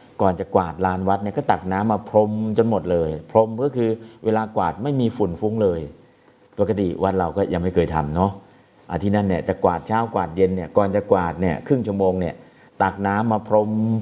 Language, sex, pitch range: Thai, male, 85-105 Hz